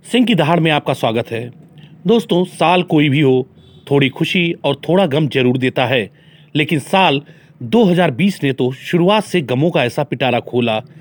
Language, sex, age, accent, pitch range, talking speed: Hindi, male, 40-59, native, 125-170 Hz, 175 wpm